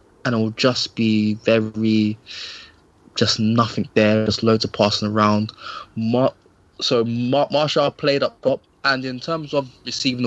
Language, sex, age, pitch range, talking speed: English, male, 20-39, 105-115 Hz, 145 wpm